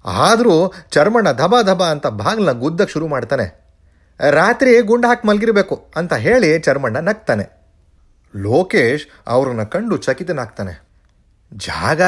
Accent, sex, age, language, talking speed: native, male, 30-49, Kannada, 110 wpm